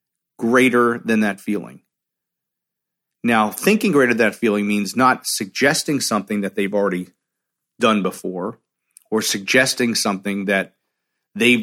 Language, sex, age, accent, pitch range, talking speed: English, male, 40-59, American, 100-130 Hz, 125 wpm